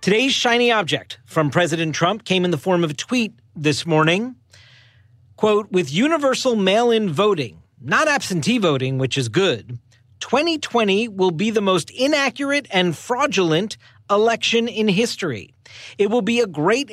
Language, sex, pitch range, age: English, male, 150-235 Hz, 40-59